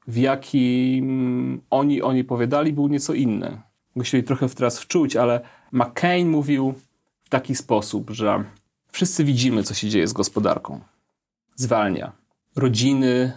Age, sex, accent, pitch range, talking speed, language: 30-49, male, native, 110-135 Hz, 130 wpm, Polish